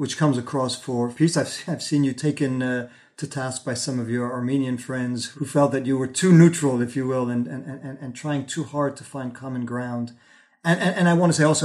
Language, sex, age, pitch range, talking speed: English, male, 40-59, 125-150 Hz, 240 wpm